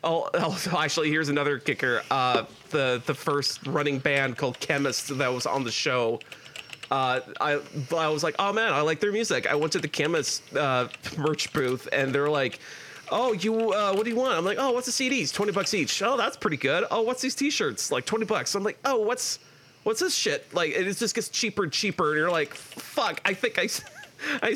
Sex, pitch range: male, 140-205 Hz